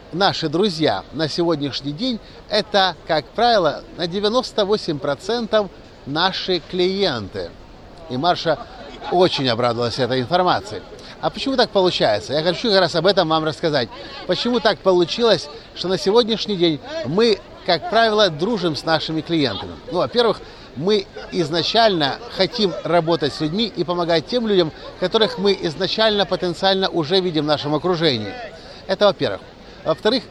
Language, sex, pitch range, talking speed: Russian, male, 150-195 Hz, 135 wpm